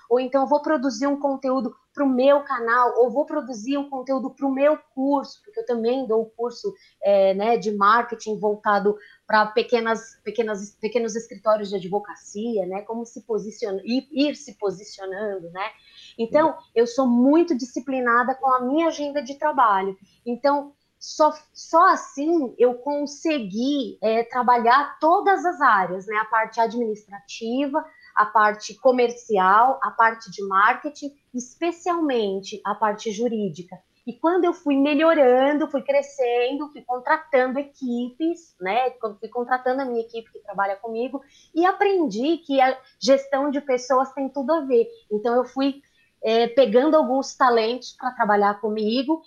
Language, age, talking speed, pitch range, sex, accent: Portuguese, 20-39, 150 wpm, 225-285 Hz, female, Brazilian